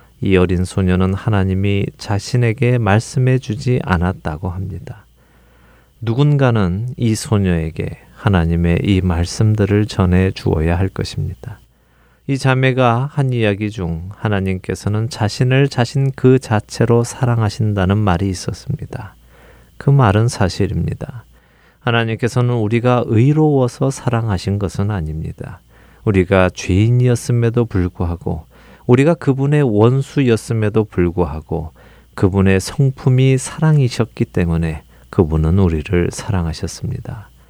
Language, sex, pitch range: Korean, male, 90-125 Hz